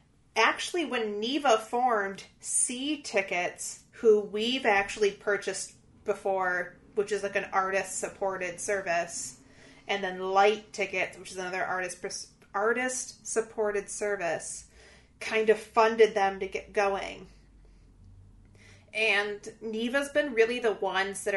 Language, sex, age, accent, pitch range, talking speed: English, female, 30-49, American, 190-225 Hz, 115 wpm